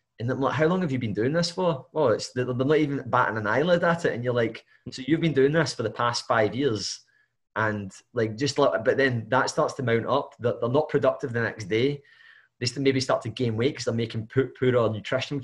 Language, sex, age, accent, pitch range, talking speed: English, male, 20-39, British, 115-140 Hz, 250 wpm